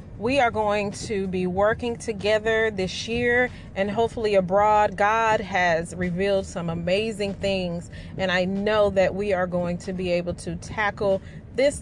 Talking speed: 155 wpm